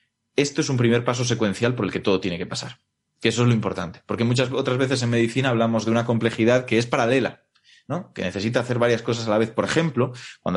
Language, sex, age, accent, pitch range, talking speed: Spanish, male, 30-49, Spanish, 105-135 Hz, 245 wpm